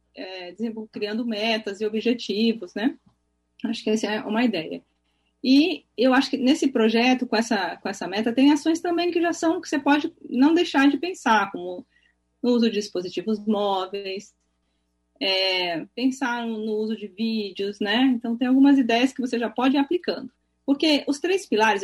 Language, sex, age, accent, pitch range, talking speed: Portuguese, female, 30-49, Brazilian, 195-255 Hz, 165 wpm